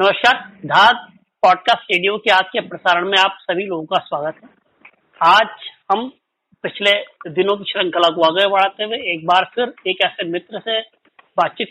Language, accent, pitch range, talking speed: Hindi, native, 180-215 Hz, 175 wpm